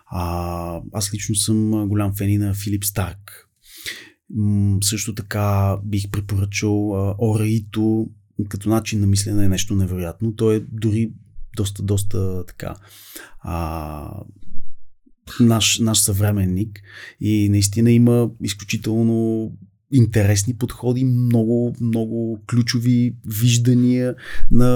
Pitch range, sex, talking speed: 100-110 Hz, male, 100 wpm